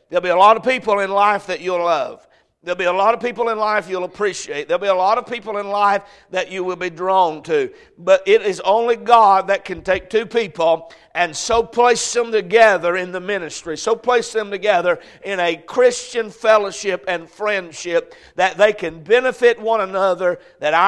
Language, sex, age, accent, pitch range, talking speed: English, male, 60-79, American, 175-225 Hz, 200 wpm